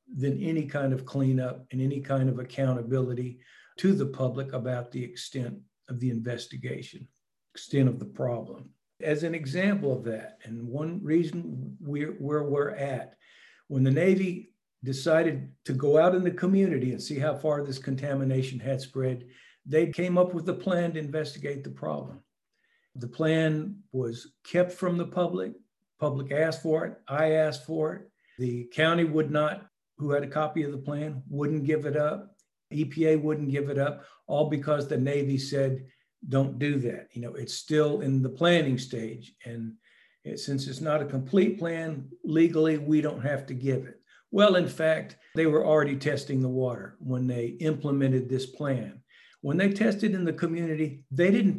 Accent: American